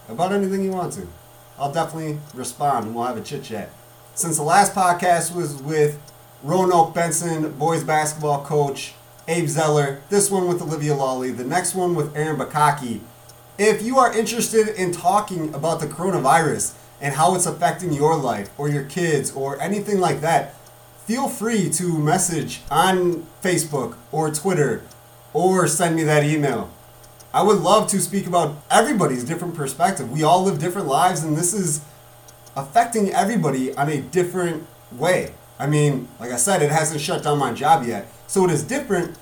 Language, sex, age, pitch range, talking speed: English, male, 30-49, 135-180 Hz, 170 wpm